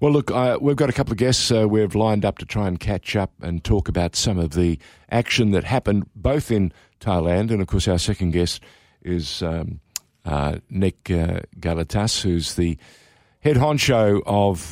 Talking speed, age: 190 wpm, 50-69